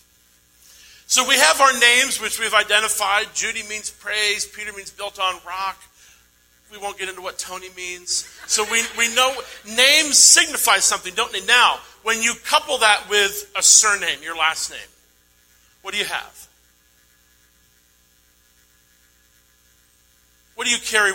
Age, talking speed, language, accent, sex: 50-69, 145 wpm, English, American, male